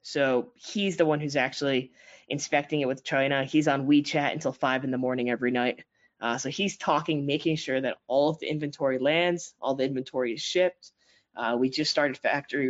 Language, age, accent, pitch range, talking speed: English, 10-29, American, 125-145 Hz, 200 wpm